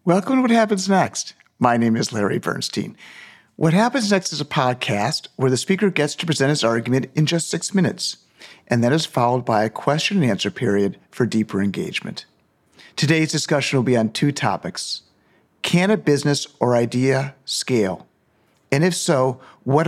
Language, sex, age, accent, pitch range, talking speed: English, male, 50-69, American, 120-155 Hz, 175 wpm